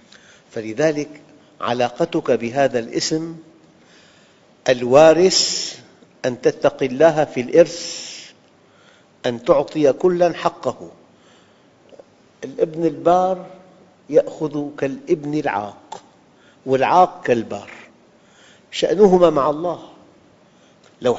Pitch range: 135-160 Hz